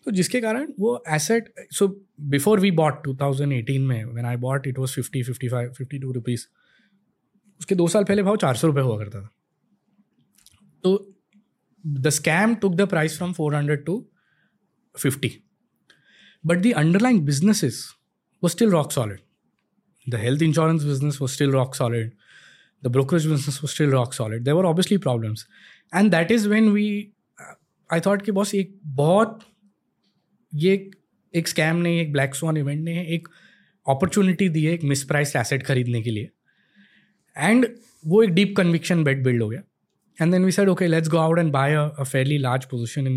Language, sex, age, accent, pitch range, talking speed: Hindi, male, 20-39, native, 125-190 Hz, 170 wpm